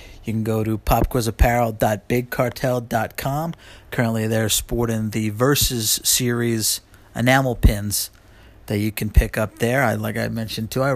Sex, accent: male, American